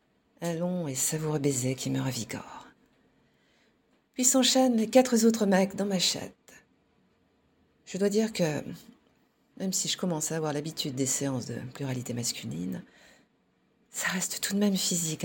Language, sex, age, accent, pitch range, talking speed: French, female, 50-69, French, 145-195 Hz, 155 wpm